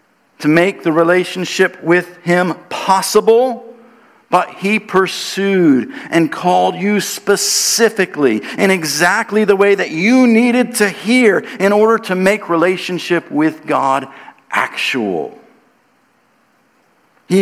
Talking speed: 110 wpm